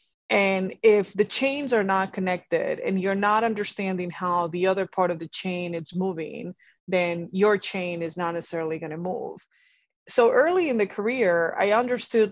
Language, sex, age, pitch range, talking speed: English, female, 20-39, 175-220 Hz, 175 wpm